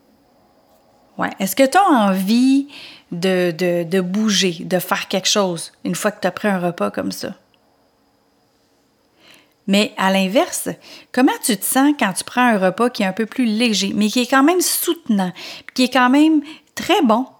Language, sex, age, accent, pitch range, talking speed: French, female, 30-49, Canadian, 195-260 Hz, 180 wpm